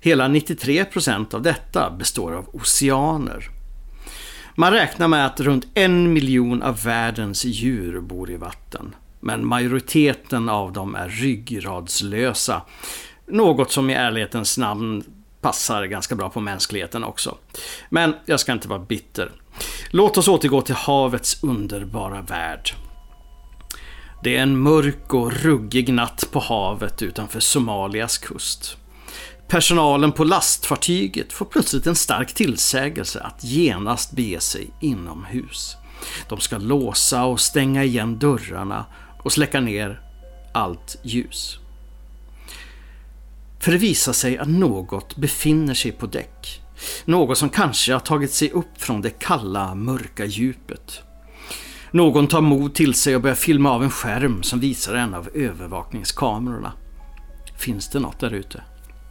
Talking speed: 135 wpm